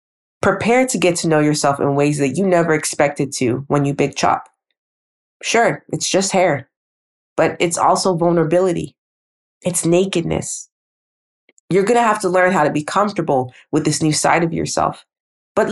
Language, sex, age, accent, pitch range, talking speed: English, female, 20-39, American, 145-205 Hz, 170 wpm